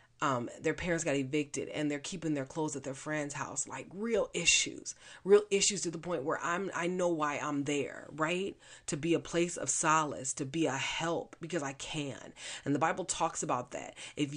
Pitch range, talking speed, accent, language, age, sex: 125-165 Hz, 210 wpm, American, English, 30-49, female